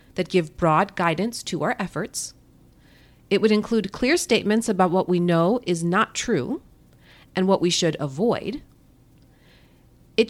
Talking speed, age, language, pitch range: 145 wpm, 40-59, English, 165-210 Hz